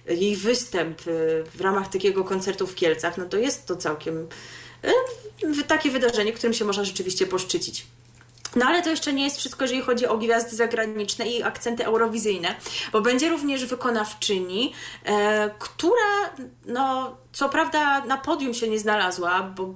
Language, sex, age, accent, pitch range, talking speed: Polish, female, 30-49, native, 185-260 Hz, 150 wpm